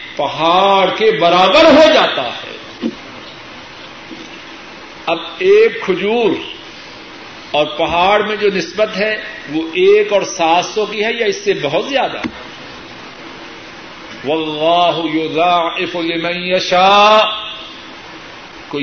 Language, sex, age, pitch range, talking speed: Urdu, male, 50-69, 170-245 Hz, 90 wpm